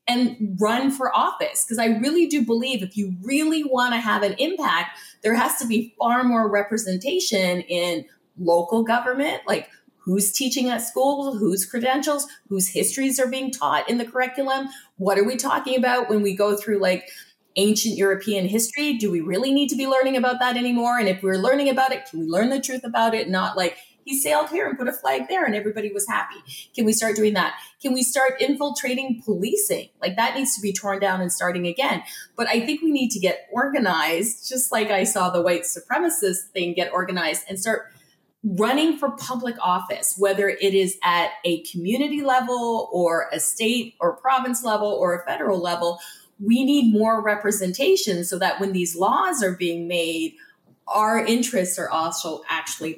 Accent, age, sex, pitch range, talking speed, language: American, 30-49, female, 185-255 Hz, 195 wpm, English